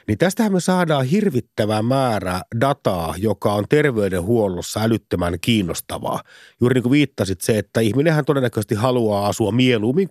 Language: Finnish